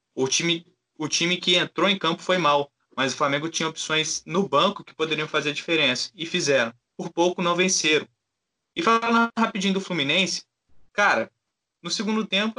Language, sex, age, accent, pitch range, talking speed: Portuguese, male, 20-39, Brazilian, 140-205 Hz, 170 wpm